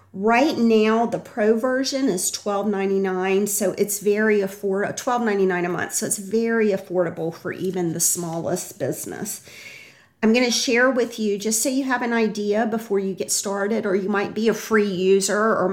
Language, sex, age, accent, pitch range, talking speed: English, female, 40-59, American, 180-210 Hz, 180 wpm